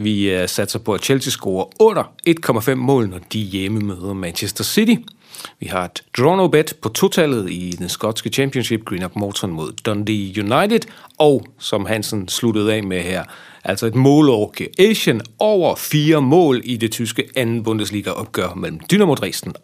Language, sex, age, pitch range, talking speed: Danish, male, 40-59, 100-150 Hz, 170 wpm